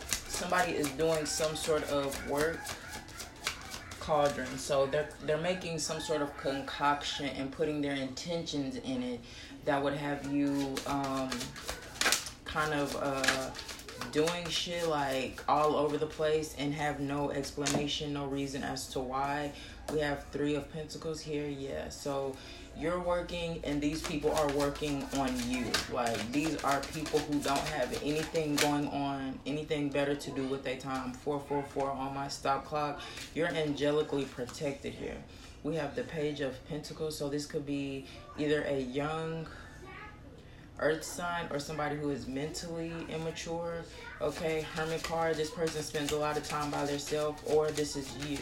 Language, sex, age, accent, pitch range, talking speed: English, female, 20-39, American, 140-155 Hz, 155 wpm